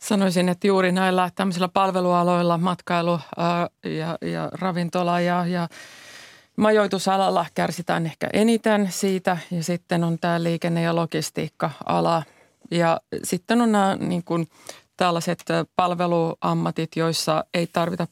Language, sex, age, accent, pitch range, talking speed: Finnish, female, 30-49, native, 155-180 Hz, 110 wpm